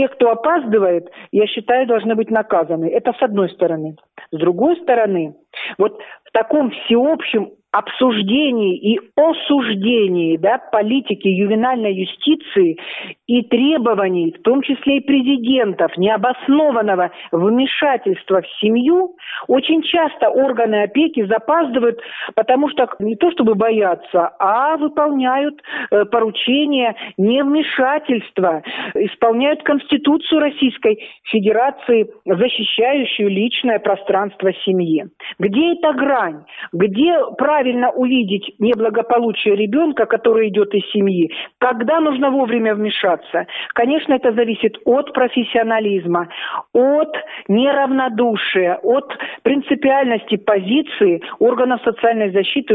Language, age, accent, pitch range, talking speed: Russian, 50-69, native, 210-275 Hz, 100 wpm